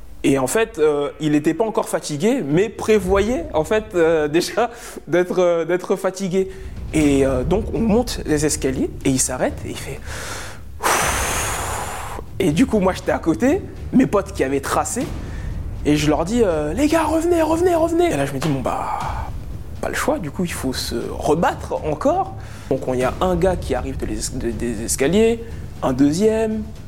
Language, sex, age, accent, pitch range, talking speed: French, male, 20-39, French, 130-200 Hz, 185 wpm